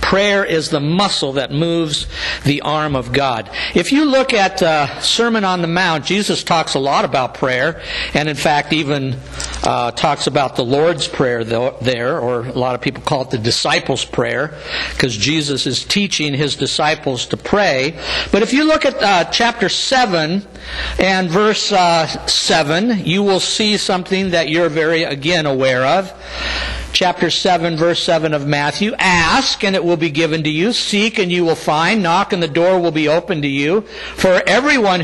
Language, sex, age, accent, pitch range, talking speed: English, male, 60-79, American, 145-205 Hz, 180 wpm